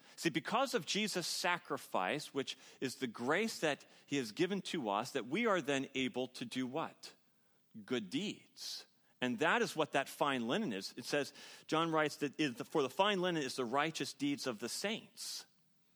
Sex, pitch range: male, 125-175 Hz